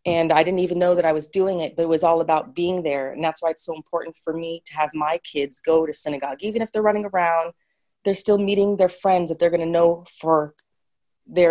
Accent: American